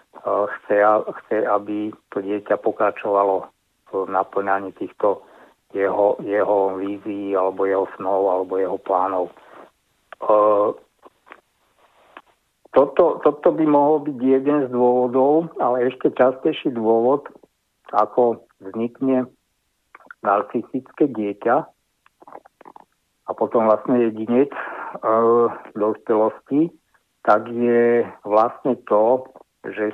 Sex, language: male, Slovak